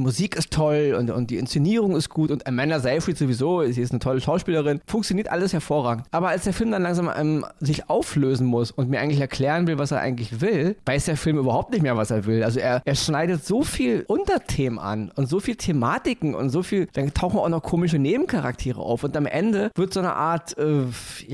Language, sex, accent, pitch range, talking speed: German, male, German, 140-200 Hz, 220 wpm